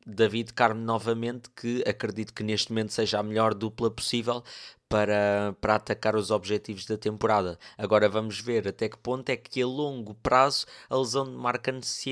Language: Portuguese